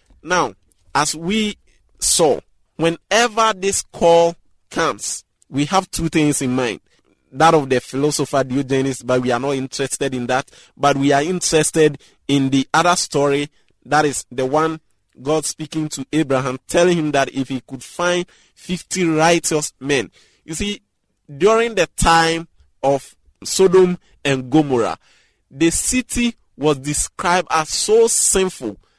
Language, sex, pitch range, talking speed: English, male, 140-185 Hz, 140 wpm